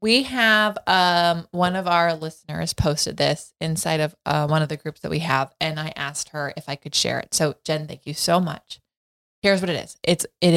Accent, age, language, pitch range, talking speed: American, 20-39, English, 150-180 Hz, 225 wpm